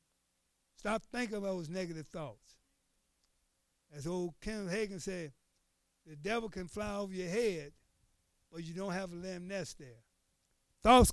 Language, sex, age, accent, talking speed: English, male, 60-79, American, 145 wpm